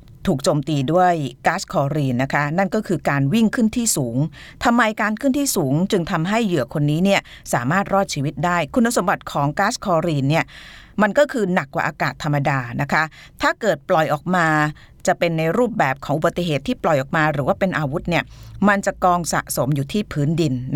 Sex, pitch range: female, 145-195 Hz